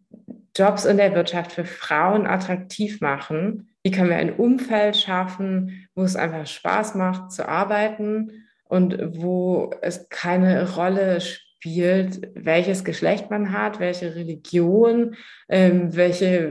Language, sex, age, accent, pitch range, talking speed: German, female, 30-49, German, 170-210 Hz, 125 wpm